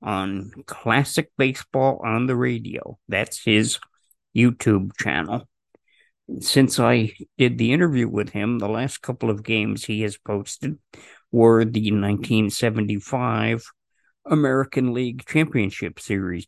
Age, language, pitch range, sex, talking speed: 50-69, English, 100-130 Hz, male, 115 wpm